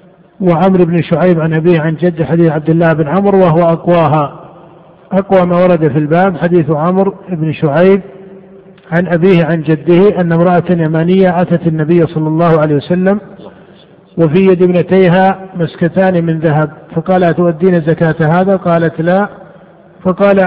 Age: 50-69